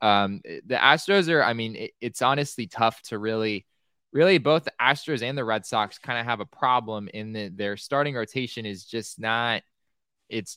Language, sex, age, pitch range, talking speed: English, male, 20-39, 100-125 Hz, 180 wpm